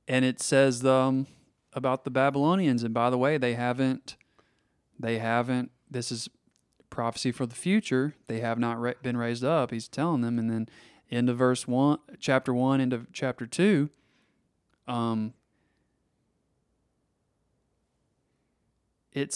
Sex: male